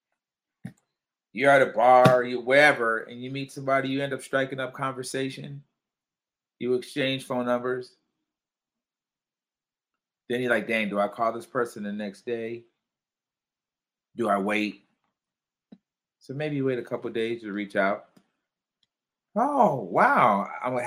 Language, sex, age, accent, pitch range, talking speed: English, male, 30-49, American, 120-155 Hz, 140 wpm